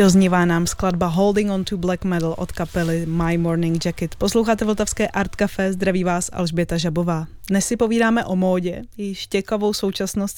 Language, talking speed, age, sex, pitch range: Czech, 170 wpm, 20-39, female, 180-210 Hz